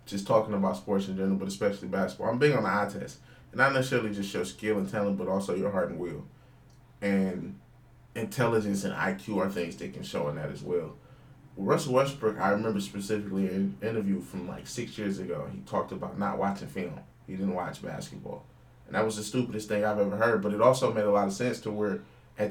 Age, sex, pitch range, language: 20-39, male, 95-110 Hz, English